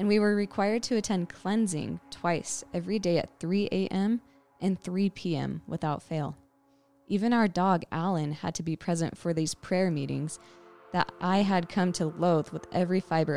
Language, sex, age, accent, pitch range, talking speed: English, female, 20-39, American, 155-190 Hz, 175 wpm